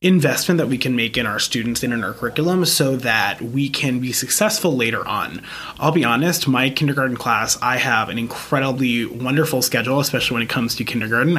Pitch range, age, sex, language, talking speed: 120-150 Hz, 30-49, male, English, 200 wpm